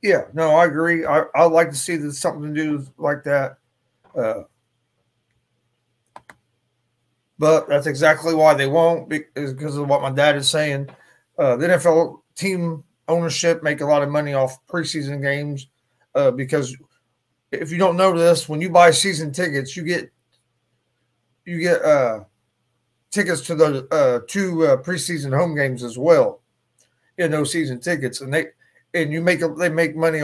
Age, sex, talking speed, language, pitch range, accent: 30-49, male, 165 wpm, English, 140-170 Hz, American